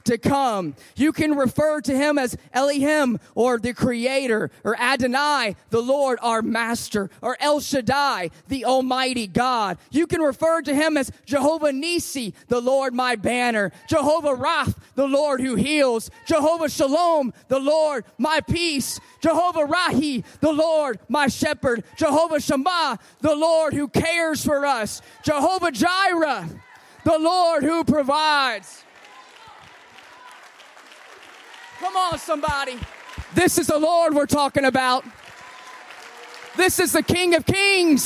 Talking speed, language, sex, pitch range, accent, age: 130 wpm, English, male, 265-335 Hz, American, 20-39